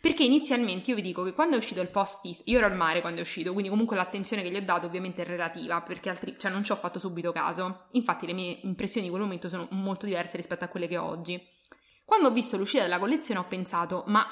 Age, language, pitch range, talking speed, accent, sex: 20-39, English, 180-225 Hz, 260 wpm, Italian, female